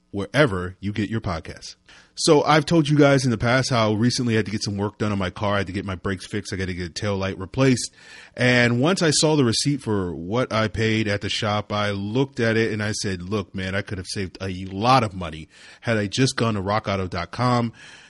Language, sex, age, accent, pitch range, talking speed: English, male, 30-49, American, 95-120 Hz, 250 wpm